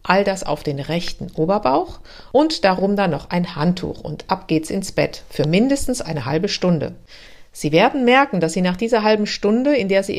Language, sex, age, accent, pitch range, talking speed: German, female, 50-69, German, 175-240 Hz, 200 wpm